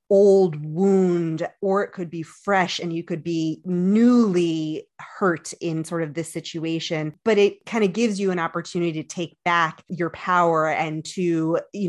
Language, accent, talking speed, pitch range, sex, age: English, American, 170 wpm, 155-185 Hz, female, 20-39